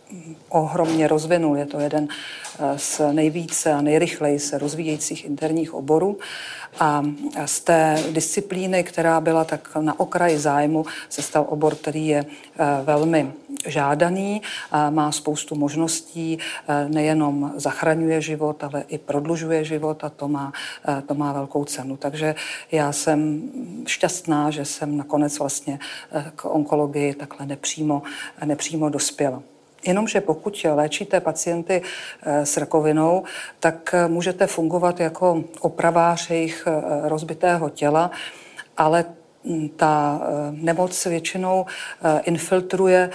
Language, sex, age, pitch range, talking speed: Czech, female, 50-69, 150-170 Hz, 110 wpm